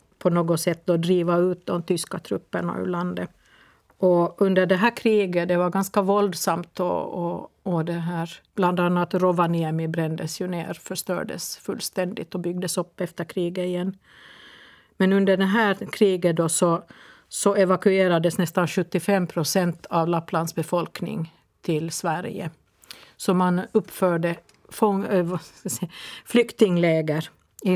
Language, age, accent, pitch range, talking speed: Swedish, 50-69, native, 165-195 Hz, 135 wpm